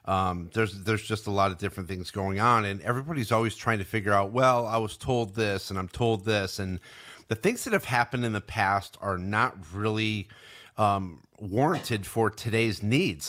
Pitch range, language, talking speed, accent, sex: 100-125 Hz, English, 200 wpm, American, male